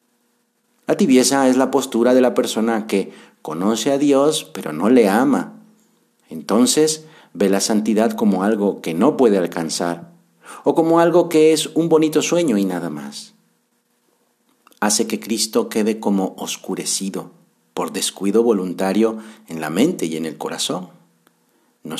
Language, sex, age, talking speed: Spanish, male, 50-69, 145 wpm